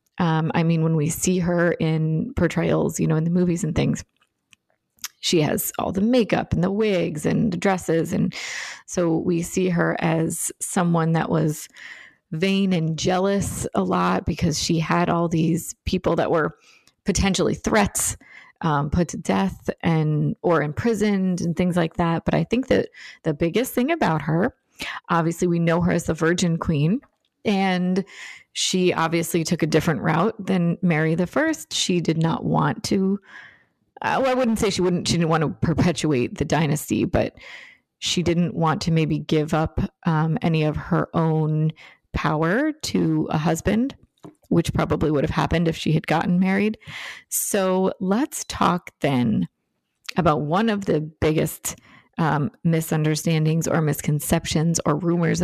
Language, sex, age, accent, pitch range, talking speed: English, female, 30-49, American, 160-190 Hz, 160 wpm